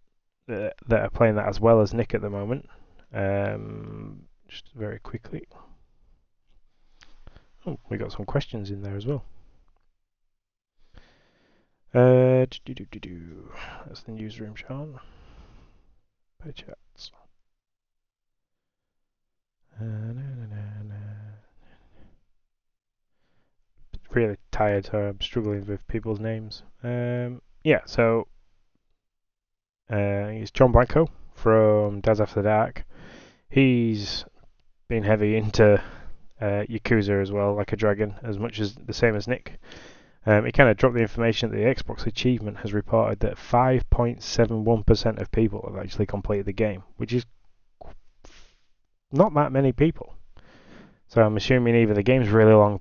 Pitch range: 100-115 Hz